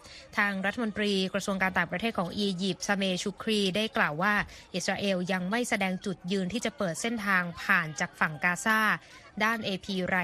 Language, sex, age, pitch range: Thai, female, 20-39, 185-220 Hz